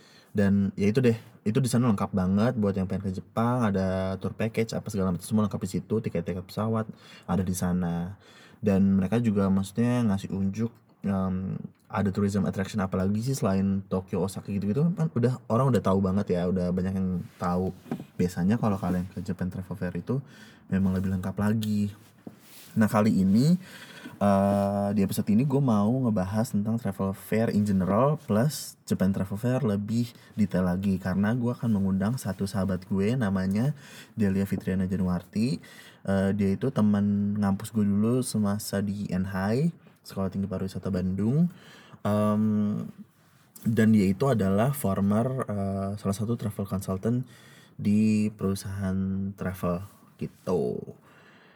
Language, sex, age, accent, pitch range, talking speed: Indonesian, male, 20-39, native, 95-115 Hz, 150 wpm